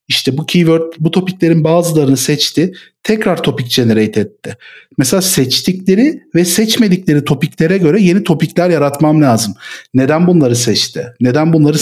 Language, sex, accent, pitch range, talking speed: Turkish, male, native, 125-170 Hz, 125 wpm